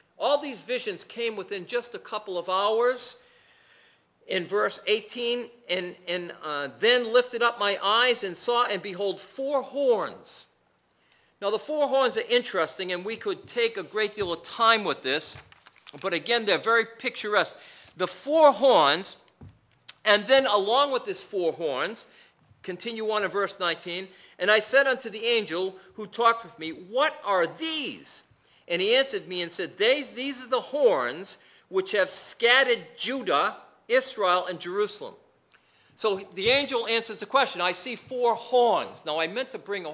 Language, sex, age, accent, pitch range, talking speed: English, male, 50-69, American, 190-265 Hz, 165 wpm